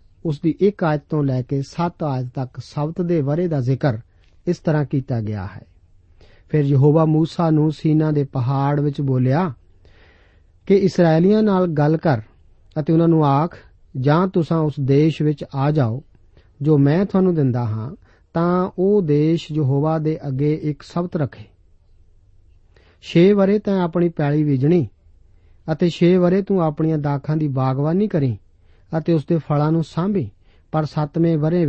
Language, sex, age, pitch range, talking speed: Punjabi, male, 50-69, 120-170 Hz, 120 wpm